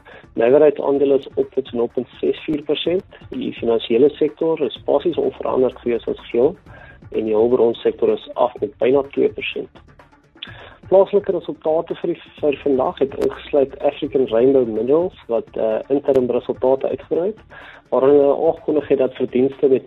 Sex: male